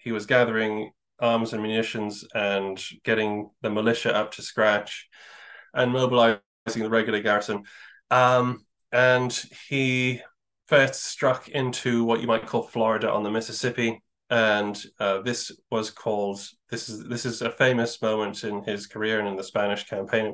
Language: English